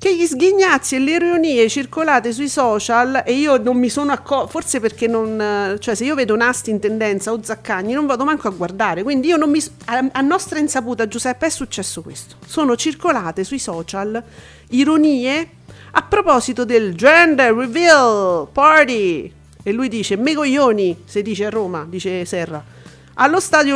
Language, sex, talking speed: Italian, female, 170 wpm